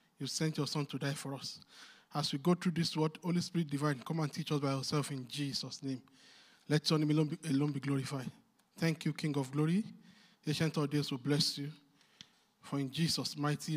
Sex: male